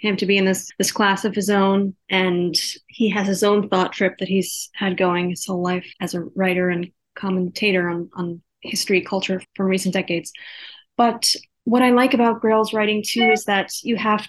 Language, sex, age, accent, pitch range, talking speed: English, female, 20-39, American, 185-215 Hz, 200 wpm